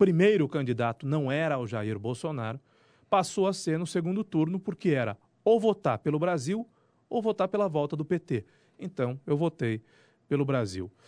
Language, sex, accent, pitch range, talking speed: Portuguese, male, Brazilian, 135-195 Hz, 170 wpm